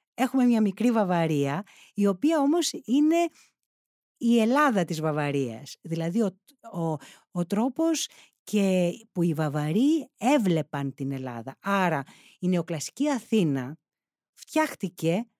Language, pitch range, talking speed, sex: Greek, 165-225 Hz, 115 wpm, female